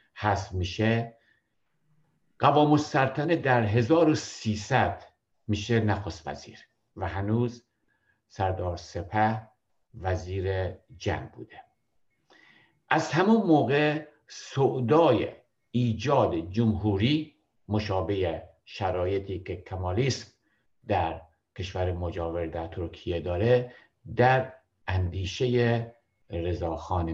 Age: 60-79